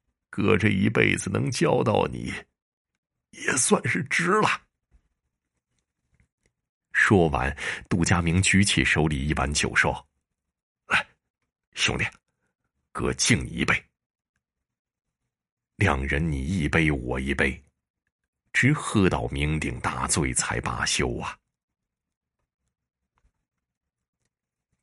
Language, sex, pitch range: Chinese, male, 65-85 Hz